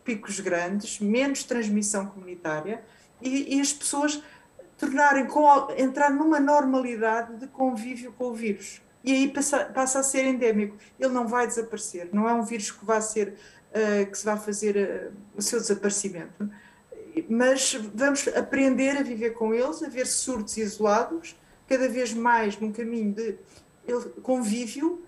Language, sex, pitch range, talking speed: Portuguese, female, 215-270 Hz, 155 wpm